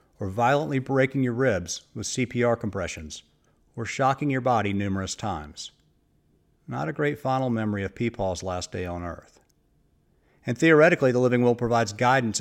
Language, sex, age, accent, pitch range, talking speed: English, male, 50-69, American, 100-135 Hz, 155 wpm